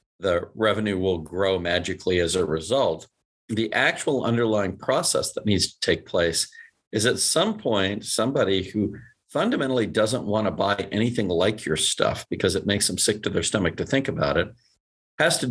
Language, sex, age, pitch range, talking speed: English, male, 50-69, 95-115 Hz, 180 wpm